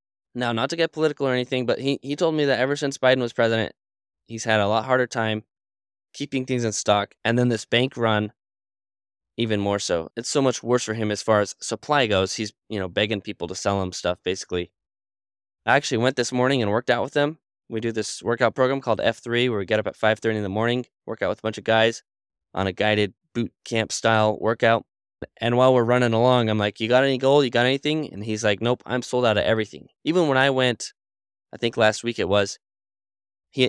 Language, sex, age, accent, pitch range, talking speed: English, male, 10-29, American, 100-125 Hz, 235 wpm